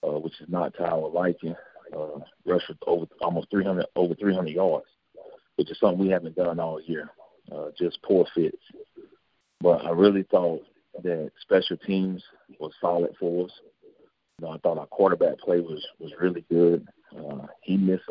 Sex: male